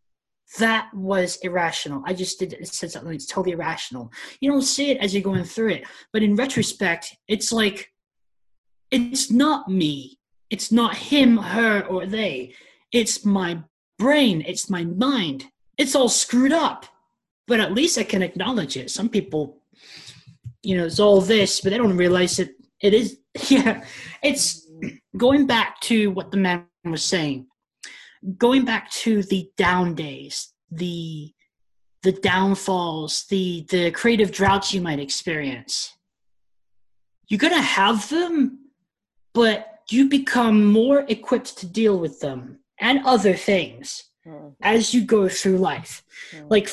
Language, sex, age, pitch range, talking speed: English, male, 20-39, 170-230 Hz, 145 wpm